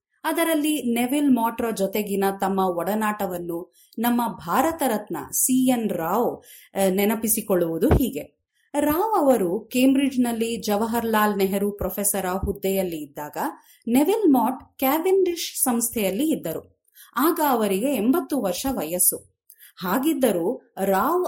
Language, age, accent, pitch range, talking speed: Kannada, 30-49, native, 195-275 Hz, 100 wpm